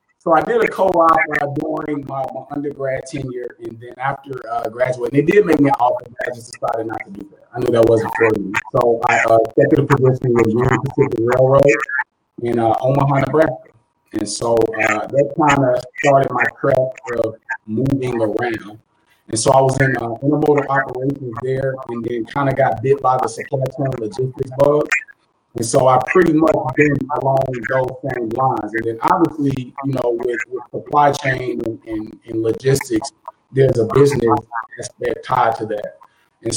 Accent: American